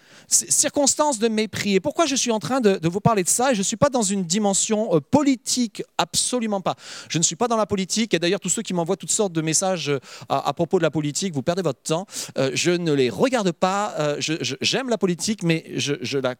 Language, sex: French, male